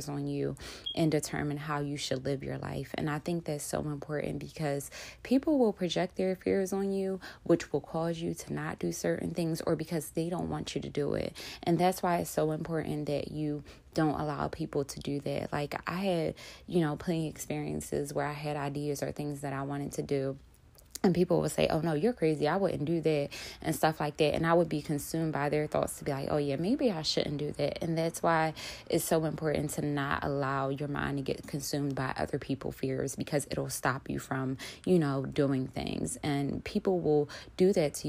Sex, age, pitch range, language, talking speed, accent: female, 20-39, 140-165 Hz, English, 220 wpm, American